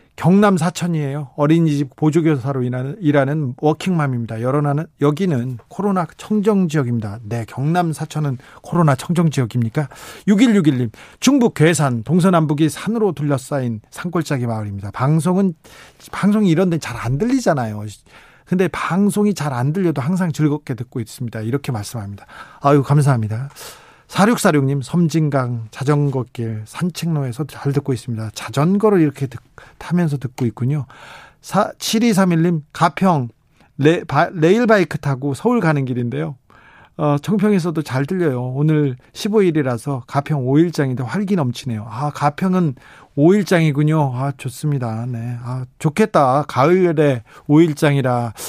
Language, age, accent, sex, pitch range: Korean, 40-59, native, male, 130-175 Hz